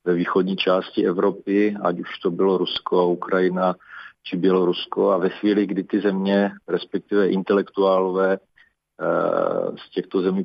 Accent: native